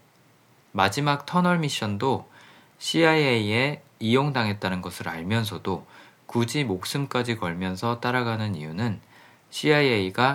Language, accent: Korean, native